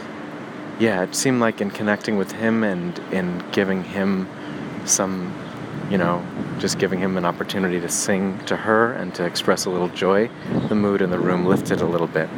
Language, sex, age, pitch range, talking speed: English, male, 30-49, 90-105 Hz, 190 wpm